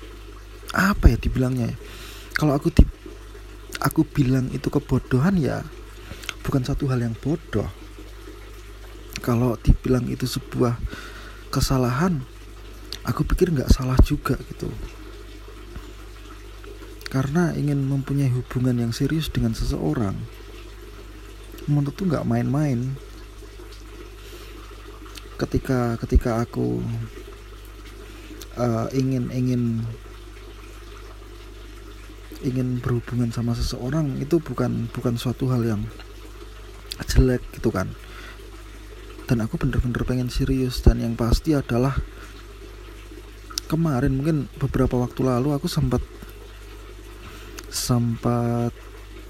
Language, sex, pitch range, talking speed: Indonesian, male, 115-135 Hz, 90 wpm